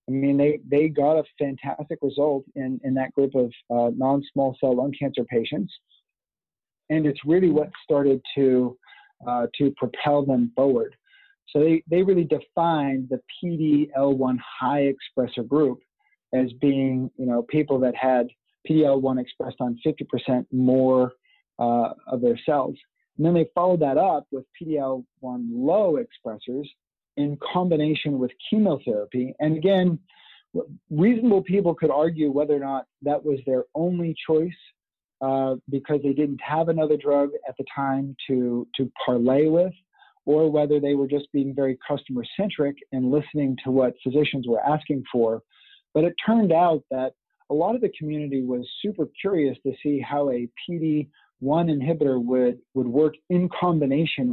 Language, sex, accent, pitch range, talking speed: English, male, American, 130-160 Hz, 155 wpm